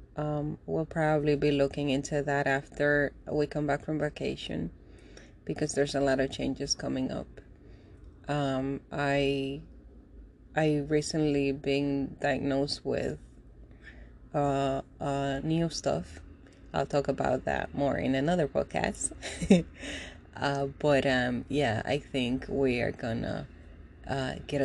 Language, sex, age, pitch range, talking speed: English, female, 20-39, 90-145 Hz, 125 wpm